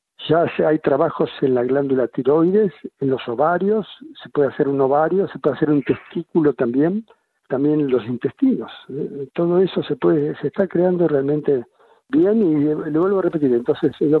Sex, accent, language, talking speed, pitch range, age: male, Argentinian, Spanish, 175 wpm, 130-185 Hz, 60-79